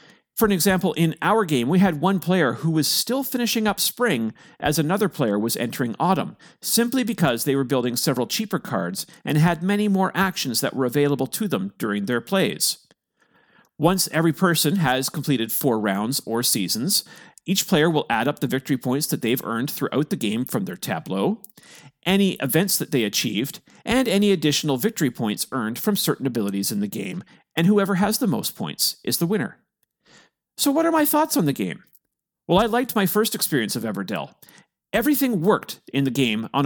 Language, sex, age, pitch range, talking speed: English, male, 40-59, 135-205 Hz, 190 wpm